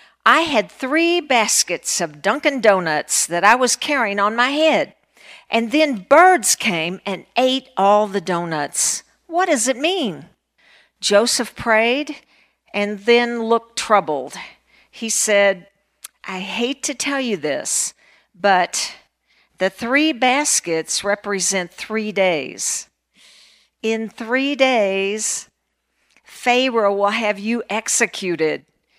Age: 50-69